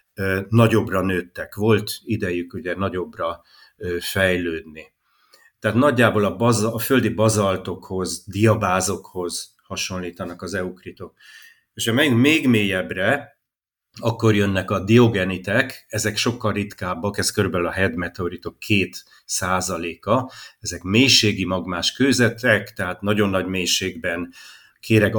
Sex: male